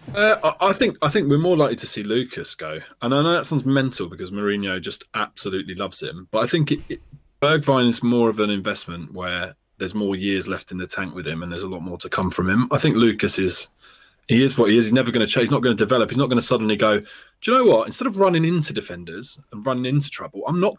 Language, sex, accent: English, male, British